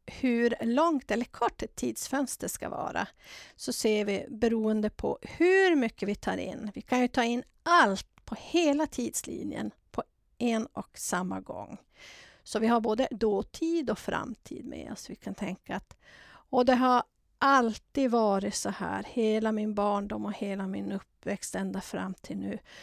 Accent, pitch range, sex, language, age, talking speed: Swedish, 210-265 Hz, female, English, 50-69, 165 wpm